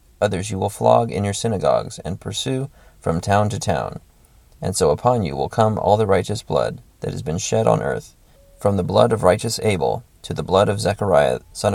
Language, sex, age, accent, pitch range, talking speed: English, male, 30-49, American, 90-110 Hz, 210 wpm